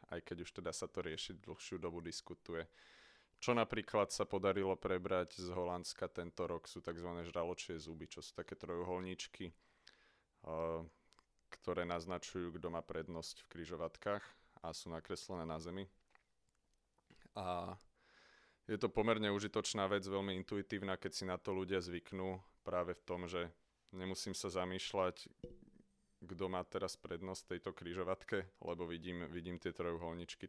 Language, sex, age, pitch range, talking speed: Slovak, male, 30-49, 85-95 Hz, 140 wpm